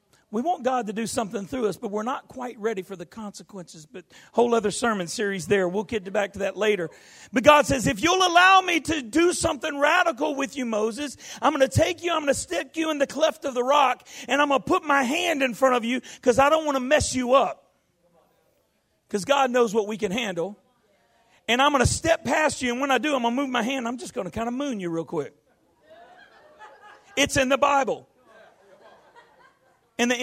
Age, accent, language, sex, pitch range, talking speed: 40-59, American, English, male, 235-305 Hz, 230 wpm